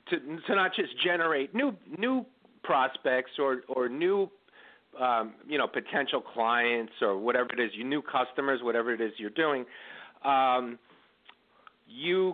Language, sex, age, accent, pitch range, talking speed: English, male, 50-69, American, 120-175 Hz, 145 wpm